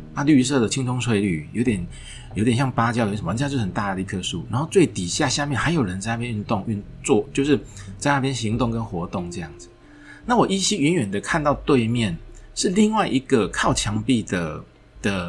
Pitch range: 95-135 Hz